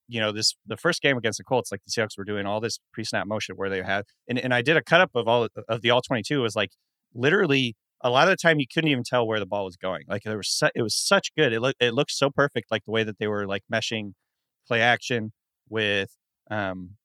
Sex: male